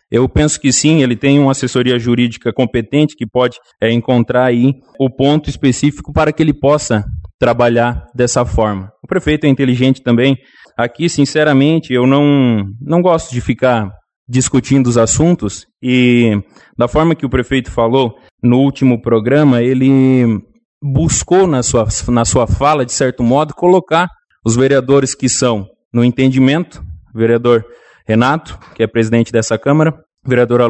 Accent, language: Brazilian, Portuguese